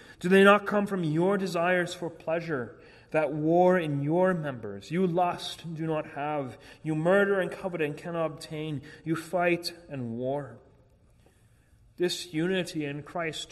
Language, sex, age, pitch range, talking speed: English, male, 30-49, 120-170 Hz, 155 wpm